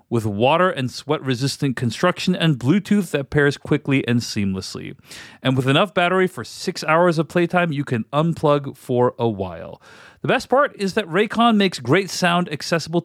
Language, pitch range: English, 120-185 Hz